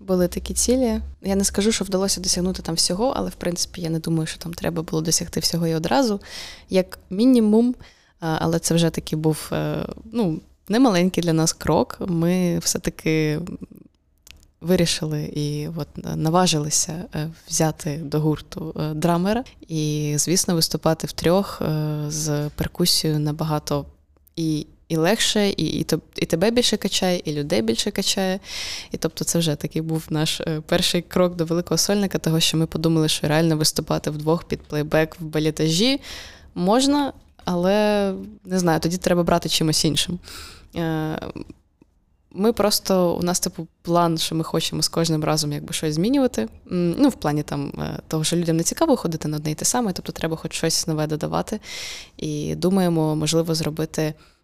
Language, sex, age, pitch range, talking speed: Ukrainian, female, 20-39, 155-185 Hz, 155 wpm